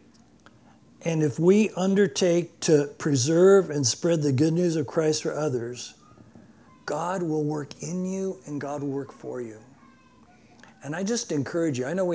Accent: American